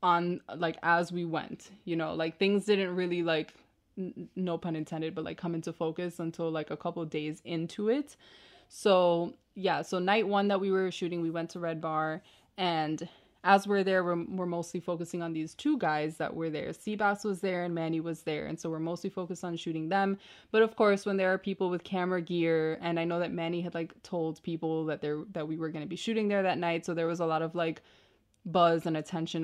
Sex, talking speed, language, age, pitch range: female, 230 wpm, English, 20-39, 165-195 Hz